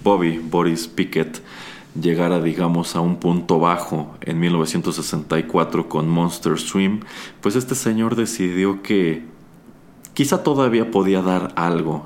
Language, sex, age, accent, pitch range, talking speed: Spanish, male, 30-49, Mexican, 80-95 Hz, 120 wpm